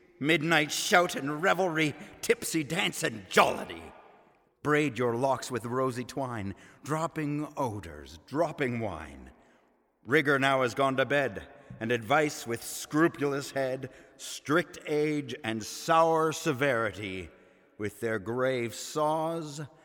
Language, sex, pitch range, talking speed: English, male, 100-140 Hz, 115 wpm